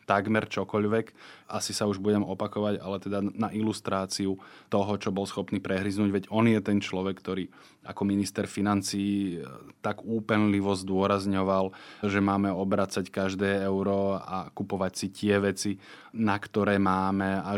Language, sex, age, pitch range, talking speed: Slovak, male, 20-39, 95-100 Hz, 145 wpm